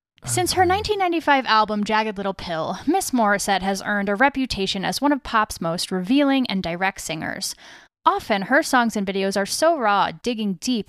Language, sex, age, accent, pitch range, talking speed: English, female, 10-29, American, 195-260 Hz, 175 wpm